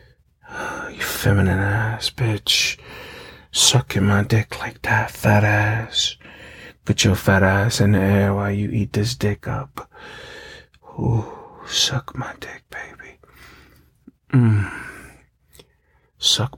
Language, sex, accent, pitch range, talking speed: English, male, American, 100-115 Hz, 115 wpm